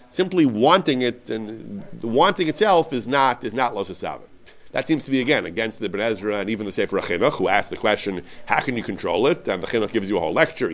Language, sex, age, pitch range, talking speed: English, male, 40-59, 120-180 Hz, 230 wpm